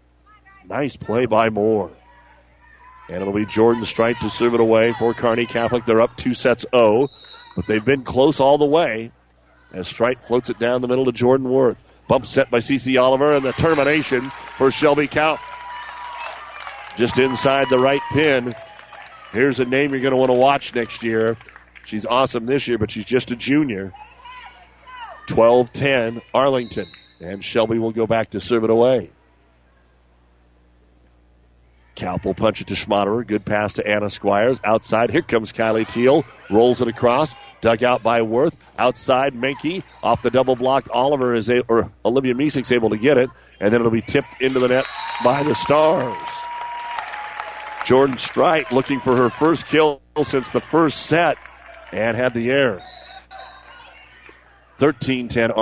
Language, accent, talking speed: English, American, 165 wpm